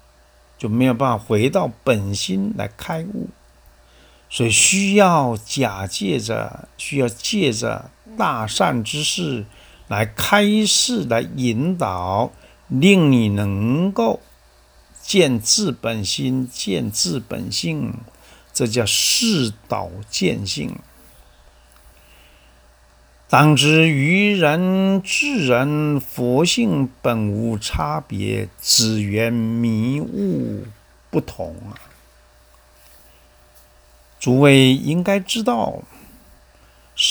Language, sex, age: Chinese, male, 60-79